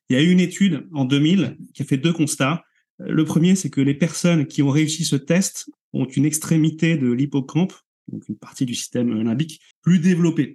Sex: male